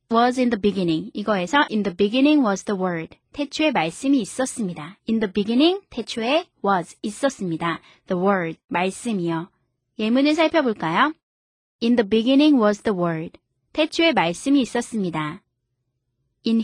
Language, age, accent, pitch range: Korean, 20-39, native, 185-275 Hz